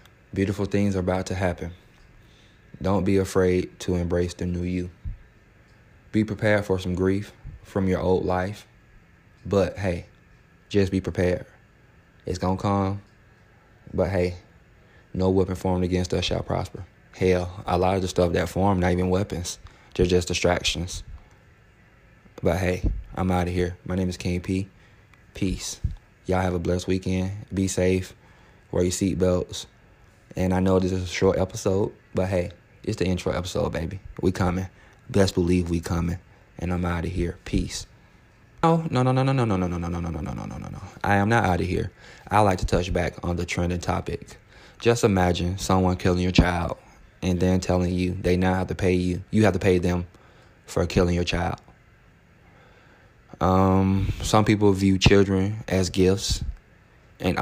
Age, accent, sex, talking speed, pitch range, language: 20-39, American, male, 175 wpm, 90-100 Hz, English